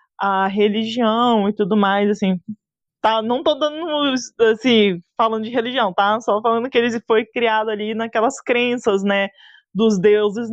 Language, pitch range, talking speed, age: Portuguese, 200-250 Hz, 155 wpm, 20-39